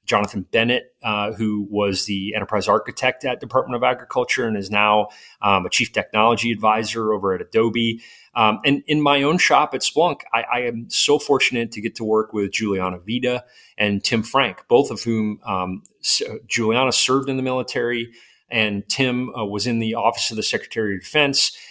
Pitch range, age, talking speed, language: 105-130 Hz, 30-49, 185 wpm, English